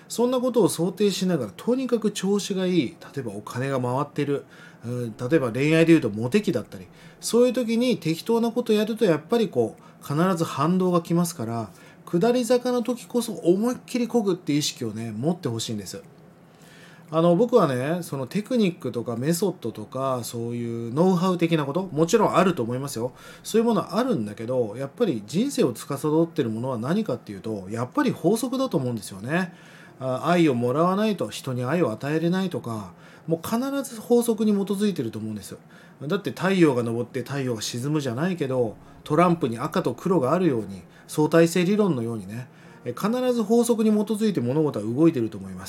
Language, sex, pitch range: Japanese, male, 125-205 Hz